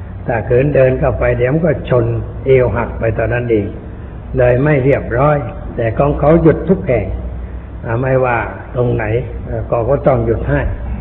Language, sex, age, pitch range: Thai, male, 60-79, 110-130 Hz